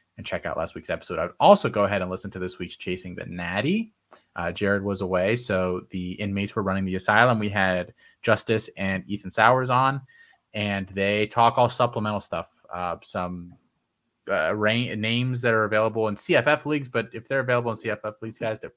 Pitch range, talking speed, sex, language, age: 95-125 Hz, 200 wpm, male, English, 20-39